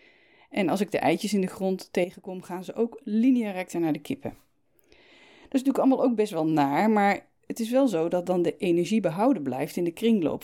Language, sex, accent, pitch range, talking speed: Dutch, female, Dutch, 155-230 Hz, 225 wpm